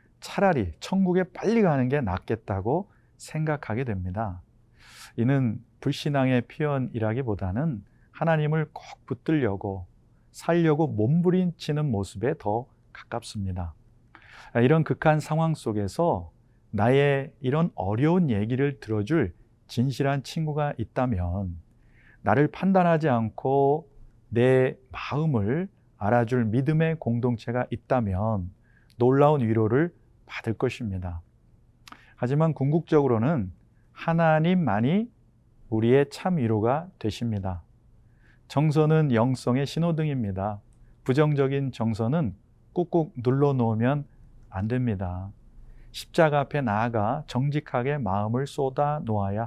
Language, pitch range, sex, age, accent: Korean, 115-150 Hz, male, 40-59, native